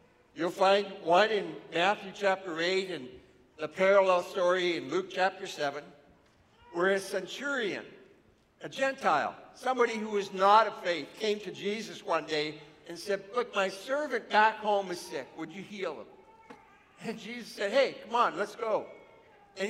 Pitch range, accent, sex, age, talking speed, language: 180-220 Hz, American, male, 60-79, 160 wpm, English